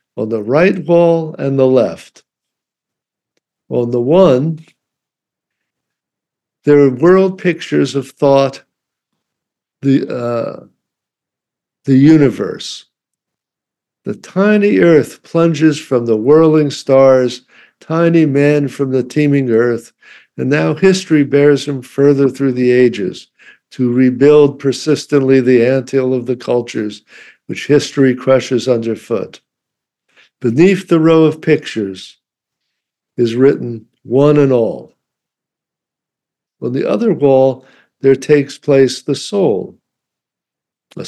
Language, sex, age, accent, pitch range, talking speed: English, male, 60-79, American, 125-145 Hz, 110 wpm